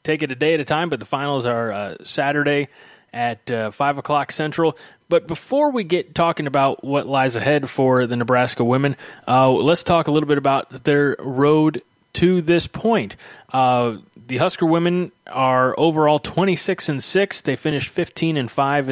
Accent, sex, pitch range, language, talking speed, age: American, male, 125-150 Hz, English, 170 wpm, 20-39